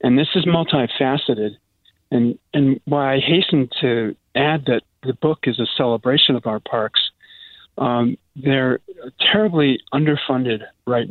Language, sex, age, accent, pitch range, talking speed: English, male, 40-59, American, 115-140 Hz, 135 wpm